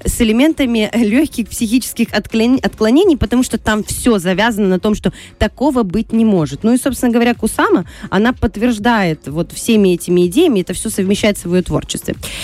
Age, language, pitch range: 20-39, Russian, 185-245 Hz